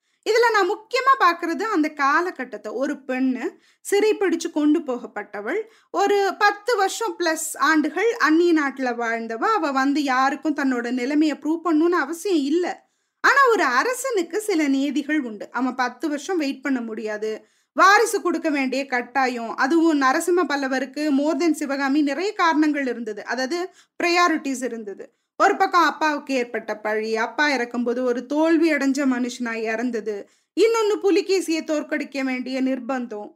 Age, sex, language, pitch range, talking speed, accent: 20-39, female, Tamil, 255-360 Hz, 130 wpm, native